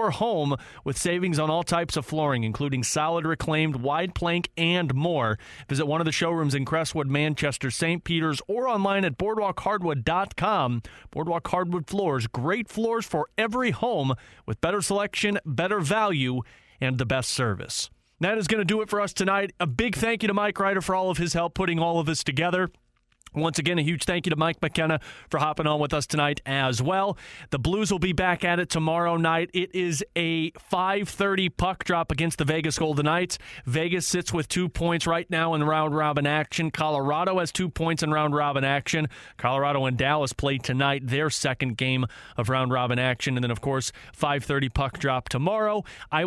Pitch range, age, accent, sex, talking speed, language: 140-180 Hz, 30-49, American, male, 195 wpm, English